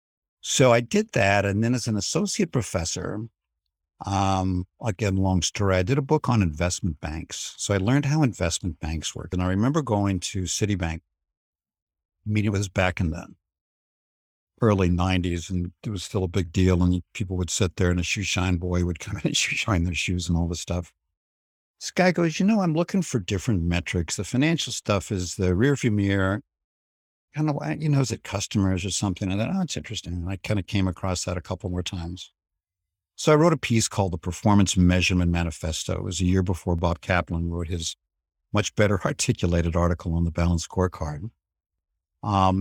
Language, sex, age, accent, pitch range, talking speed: English, male, 60-79, American, 85-105 Hz, 200 wpm